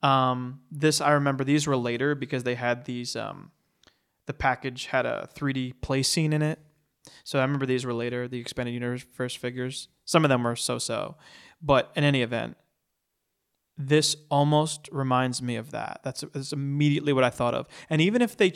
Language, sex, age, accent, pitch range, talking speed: English, male, 20-39, American, 125-150 Hz, 190 wpm